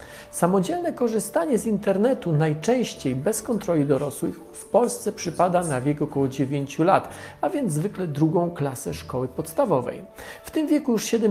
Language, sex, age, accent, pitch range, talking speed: Polish, male, 40-59, native, 160-225 Hz, 145 wpm